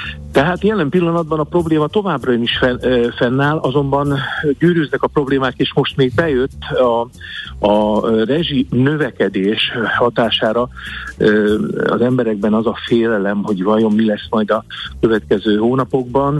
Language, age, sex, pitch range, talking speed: Hungarian, 50-69, male, 110-145 Hz, 125 wpm